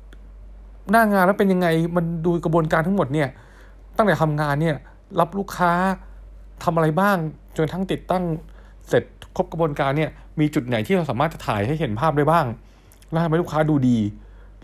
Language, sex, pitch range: Thai, male, 110-165 Hz